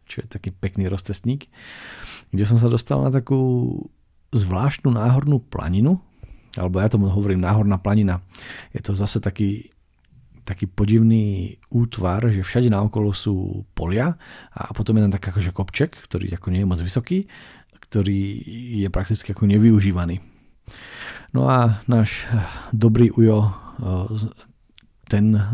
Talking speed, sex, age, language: 135 wpm, male, 40-59, Slovak